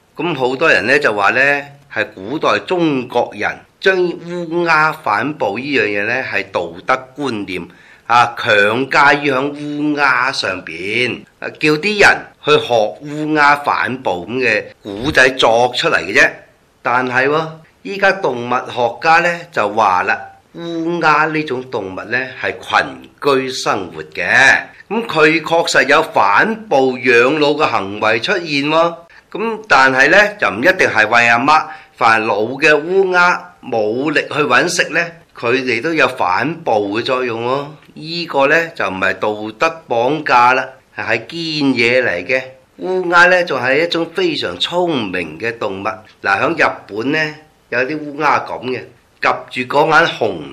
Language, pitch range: Chinese, 130-170 Hz